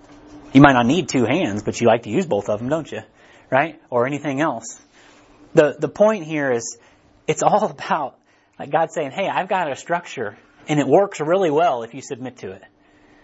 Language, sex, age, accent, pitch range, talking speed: English, male, 30-49, American, 125-170 Hz, 205 wpm